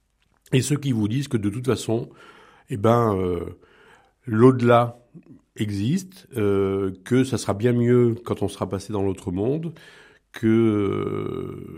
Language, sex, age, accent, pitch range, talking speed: French, male, 50-69, French, 105-135 Hz, 140 wpm